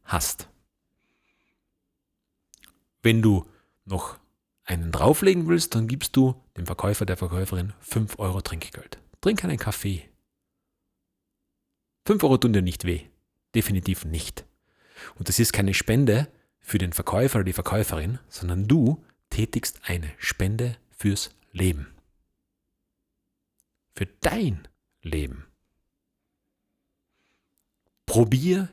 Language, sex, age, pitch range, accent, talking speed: German, male, 40-59, 95-130 Hz, German, 105 wpm